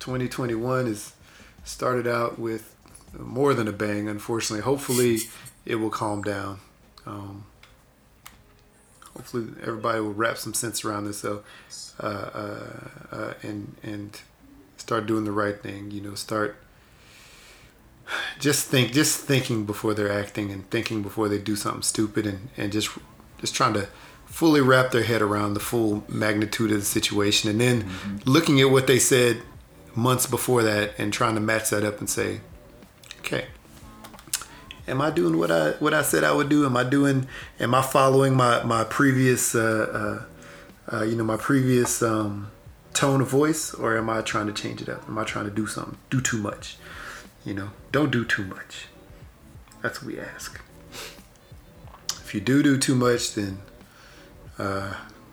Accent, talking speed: American, 165 wpm